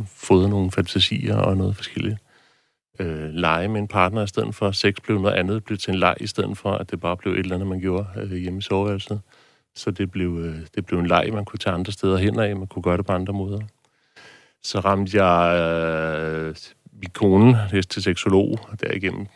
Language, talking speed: Danish, 225 wpm